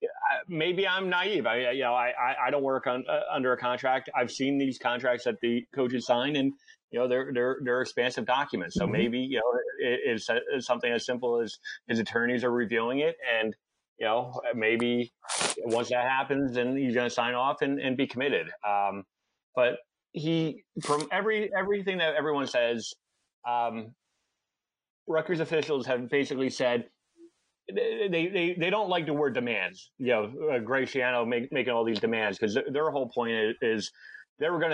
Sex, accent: male, American